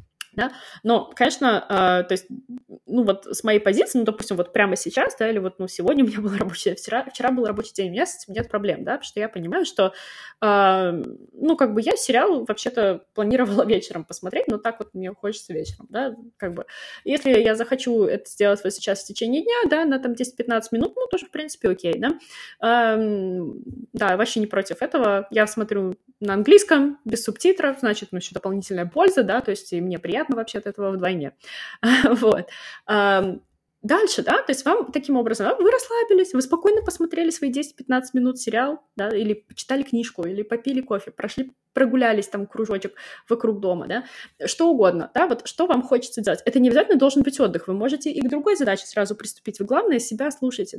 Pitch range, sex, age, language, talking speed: 200-270 Hz, female, 20-39, Russian, 195 wpm